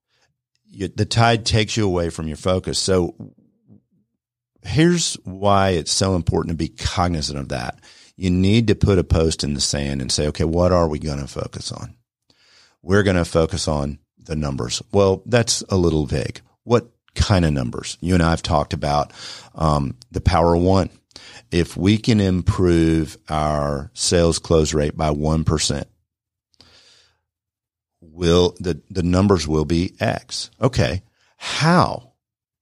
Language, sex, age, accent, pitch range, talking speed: English, male, 50-69, American, 80-105 Hz, 155 wpm